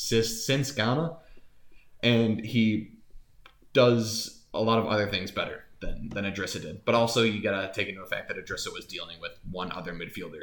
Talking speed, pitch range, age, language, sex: 185 wpm, 100-115 Hz, 20-39, English, male